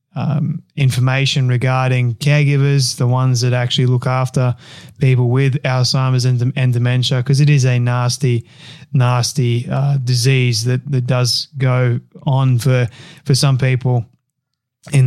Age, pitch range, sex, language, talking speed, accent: 20-39, 125-145 Hz, male, English, 135 wpm, Australian